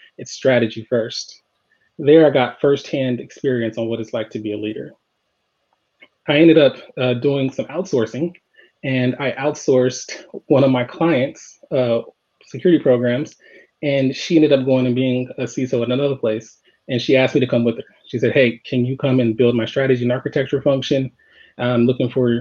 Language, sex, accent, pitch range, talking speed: English, male, American, 120-140 Hz, 185 wpm